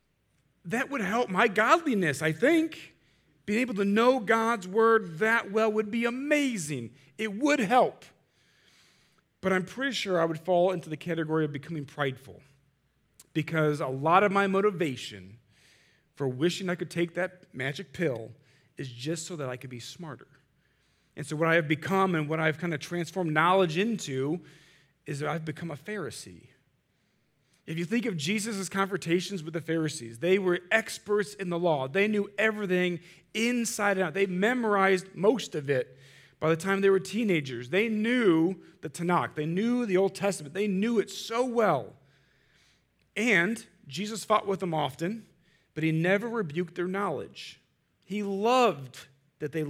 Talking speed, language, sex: 165 wpm, English, male